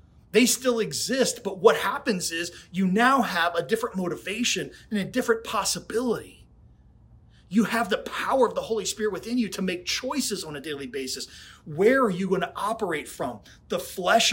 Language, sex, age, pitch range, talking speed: English, male, 30-49, 180-235 Hz, 180 wpm